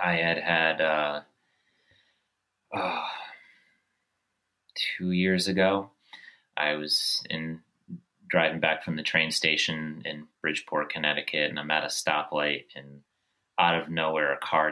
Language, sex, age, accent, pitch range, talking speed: English, male, 30-49, American, 75-90 Hz, 120 wpm